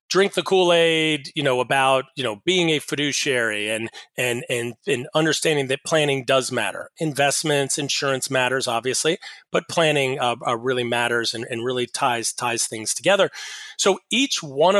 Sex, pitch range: male, 130-155 Hz